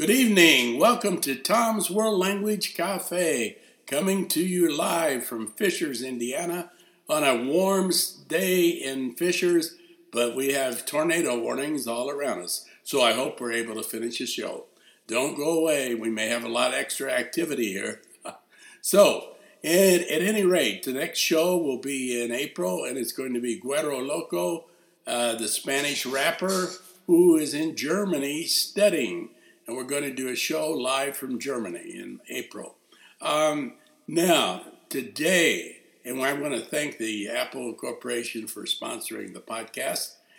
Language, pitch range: English, 120-180 Hz